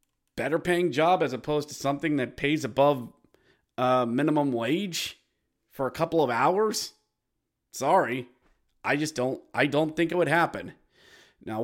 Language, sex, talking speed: English, male, 145 wpm